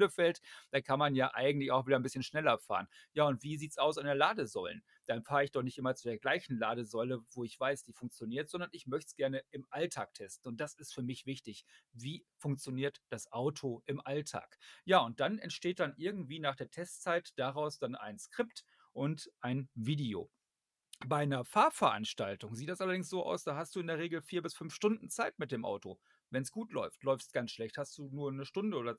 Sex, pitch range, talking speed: male, 130-170 Hz, 225 wpm